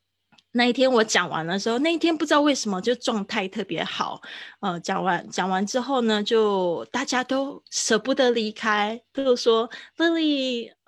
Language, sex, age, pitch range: Chinese, female, 20-39, 190-255 Hz